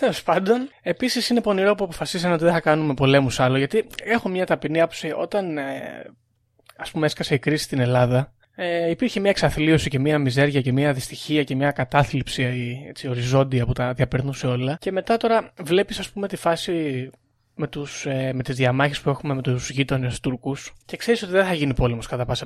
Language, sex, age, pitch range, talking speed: Greek, male, 20-39, 135-180 Hz, 185 wpm